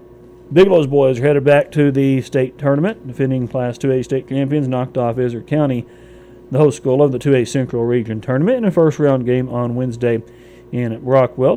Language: English